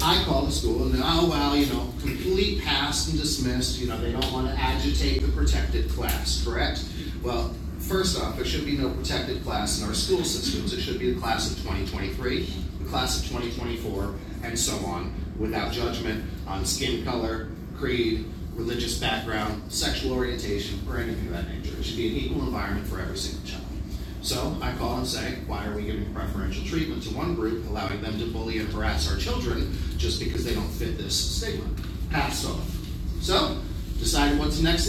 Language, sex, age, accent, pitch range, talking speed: English, male, 40-59, American, 70-105 Hz, 195 wpm